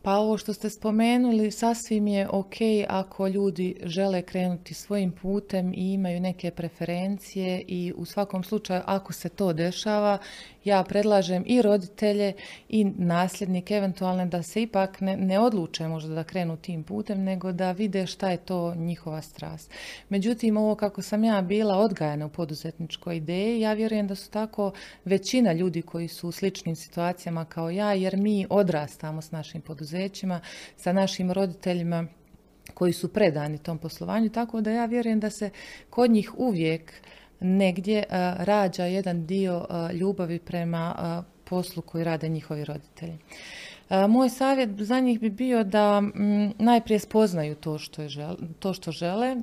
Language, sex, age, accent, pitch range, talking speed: Croatian, female, 30-49, native, 175-210 Hz, 160 wpm